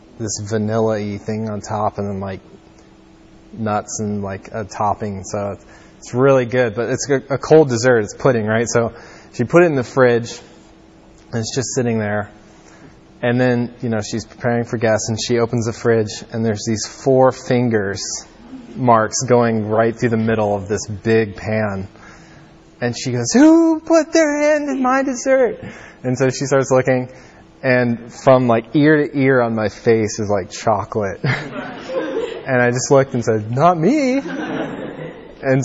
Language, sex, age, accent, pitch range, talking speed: English, male, 20-39, American, 105-130 Hz, 170 wpm